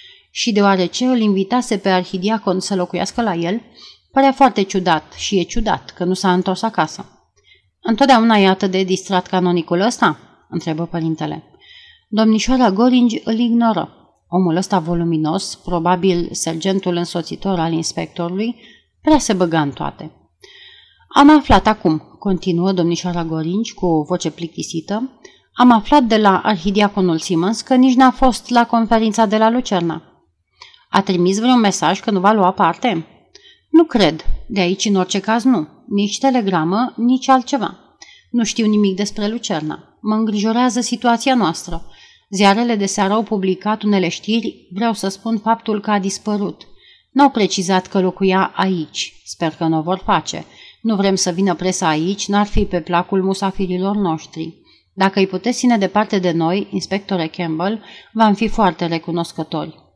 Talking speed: 155 wpm